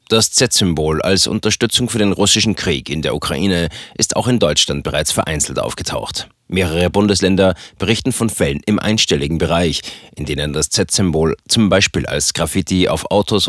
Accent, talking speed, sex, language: German, 160 wpm, male, German